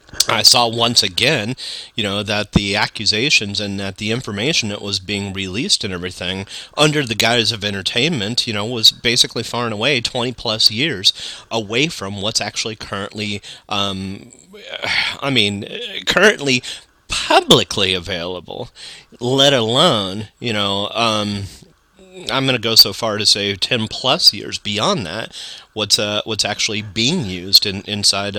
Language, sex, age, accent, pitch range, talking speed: English, male, 30-49, American, 100-130 Hz, 150 wpm